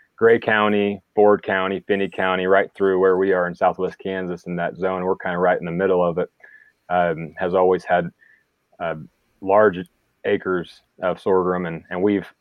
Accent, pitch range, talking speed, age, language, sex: American, 90-105 Hz, 185 wpm, 30-49, English, male